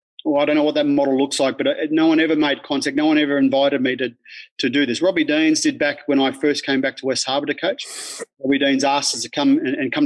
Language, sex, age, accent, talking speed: English, male, 30-49, Australian, 280 wpm